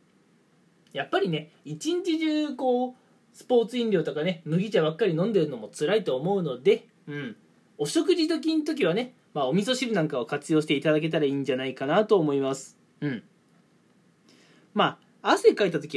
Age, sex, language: 20-39, male, Japanese